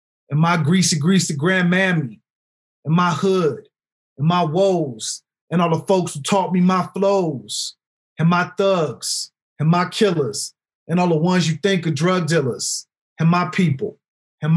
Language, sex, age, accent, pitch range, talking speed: English, male, 40-59, American, 140-180 Hz, 160 wpm